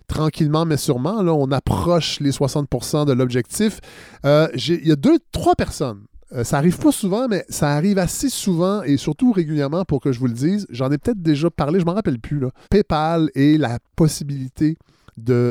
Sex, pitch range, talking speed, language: male, 125-155 Hz, 200 wpm, French